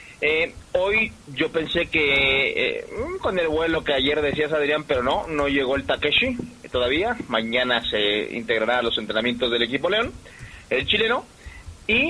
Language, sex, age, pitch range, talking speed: Spanish, male, 30-49, 130-195 Hz, 160 wpm